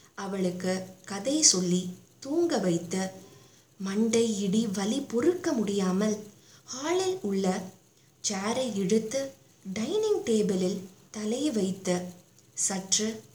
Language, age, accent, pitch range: Tamil, 20-39, native, 190-260 Hz